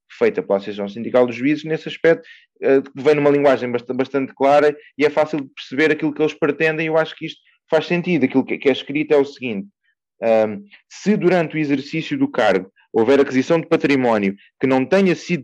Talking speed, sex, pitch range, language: 200 wpm, male, 130-185 Hz, Portuguese